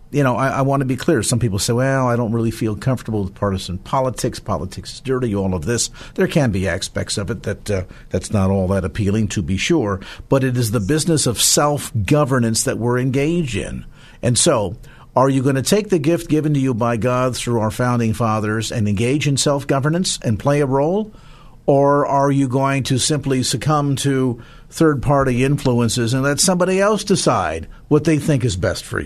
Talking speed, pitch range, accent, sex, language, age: 205 wpm, 105-145 Hz, American, male, English, 50-69